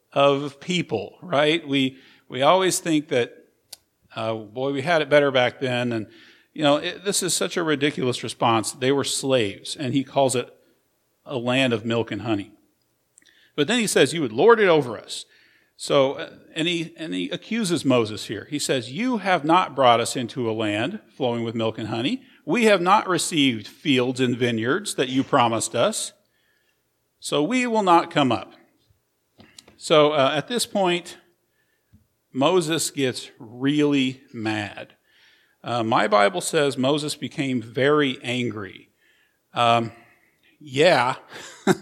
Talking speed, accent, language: 155 wpm, American, English